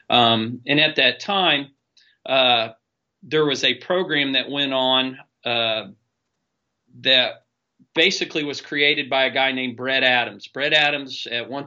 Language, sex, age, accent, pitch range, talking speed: English, male, 40-59, American, 120-140 Hz, 145 wpm